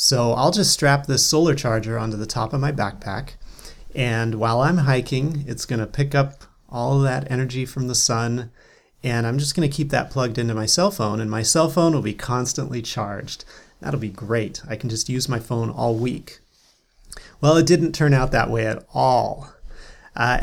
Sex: male